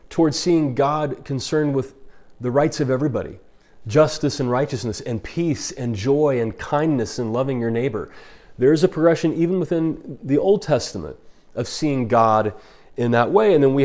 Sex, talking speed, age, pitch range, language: male, 175 wpm, 30-49, 130-160 Hz, English